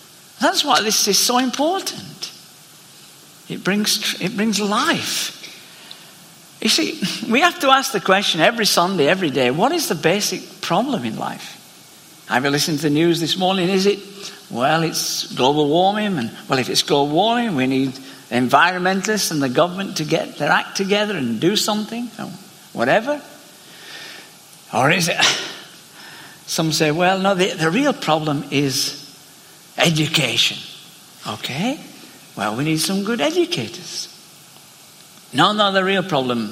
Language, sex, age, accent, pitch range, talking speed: English, male, 60-79, British, 150-225 Hz, 150 wpm